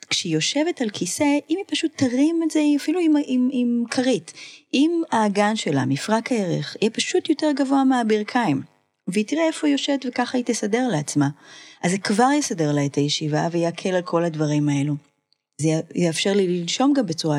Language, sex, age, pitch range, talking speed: Hebrew, female, 30-49, 160-260 Hz, 185 wpm